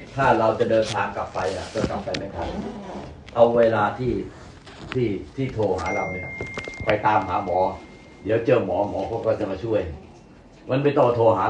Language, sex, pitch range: Thai, male, 110-145 Hz